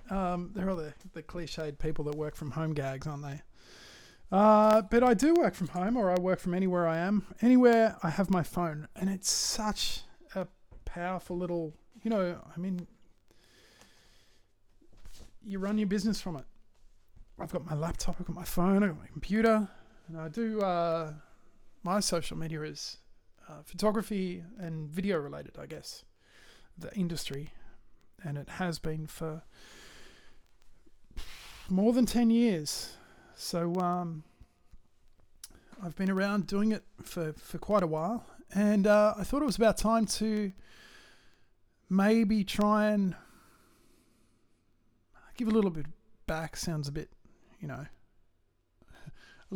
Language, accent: English, Australian